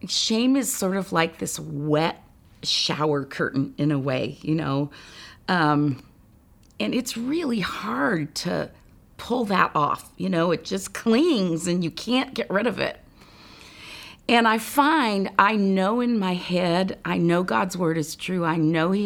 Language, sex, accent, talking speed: English, female, American, 165 wpm